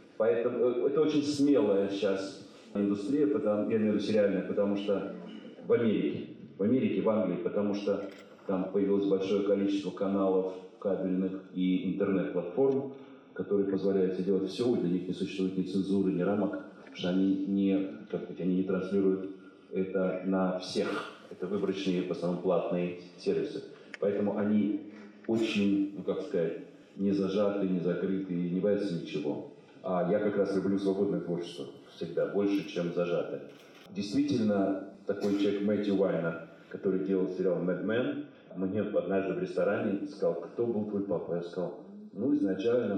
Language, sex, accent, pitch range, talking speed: Russian, male, native, 95-105 Hz, 145 wpm